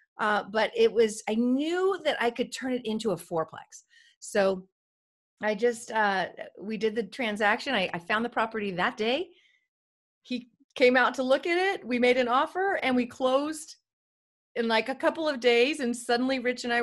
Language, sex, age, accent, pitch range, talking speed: English, female, 30-49, American, 220-275 Hz, 195 wpm